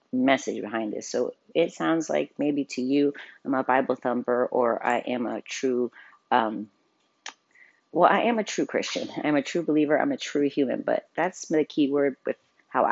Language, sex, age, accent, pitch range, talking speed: English, female, 30-49, American, 125-145 Hz, 190 wpm